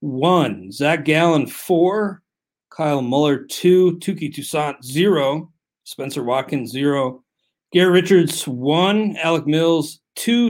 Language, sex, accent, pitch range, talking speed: English, male, American, 145-180 Hz, 110 wpm